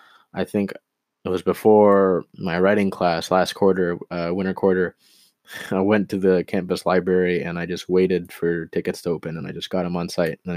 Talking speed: 205 wpm